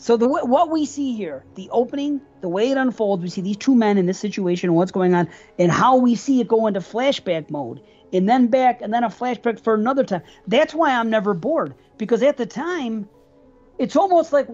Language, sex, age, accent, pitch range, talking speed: English, male, 40-59, American, 185-235 Hz, 225 wpm